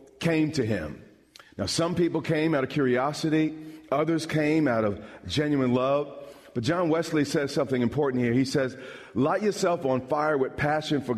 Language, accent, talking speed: English, American, 170 wpm